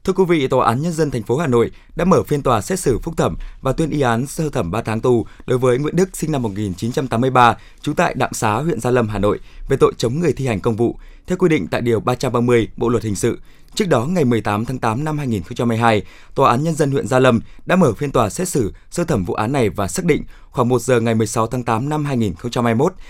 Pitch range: 115-150 Hz